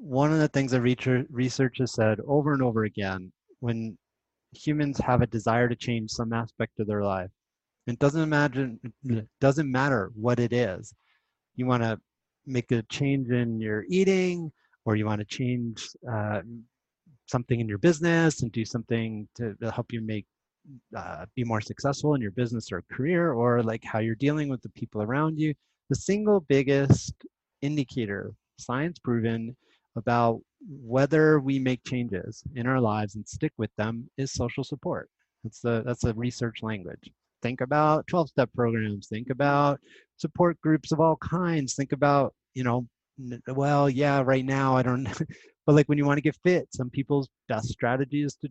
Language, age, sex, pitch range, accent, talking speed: English, 30-49, male, 115-140 Hz, American, 175 wpm